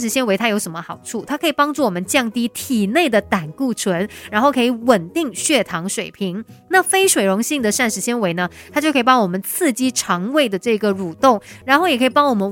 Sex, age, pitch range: female, 30-49, 195-270 Hz